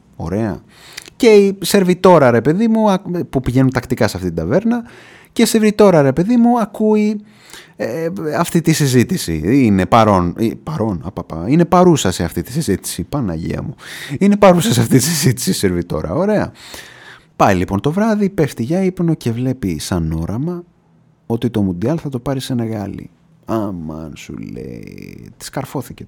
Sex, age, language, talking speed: male, 30-49, Greek, 165 wpm